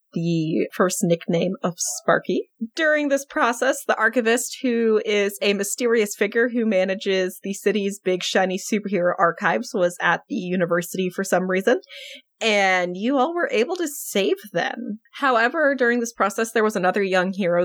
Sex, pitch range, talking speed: female, 185-250 Hz, 160 wpm